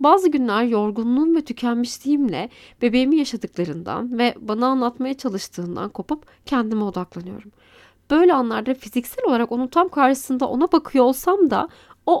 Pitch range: 220-300 Hz